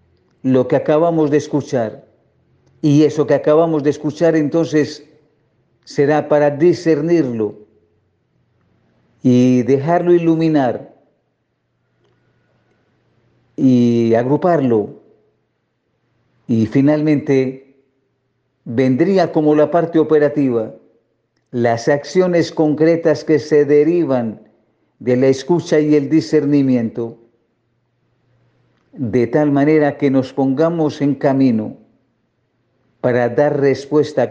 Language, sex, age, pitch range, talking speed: Spanish, male, 50-69, 120-150 Hz, 85 wpm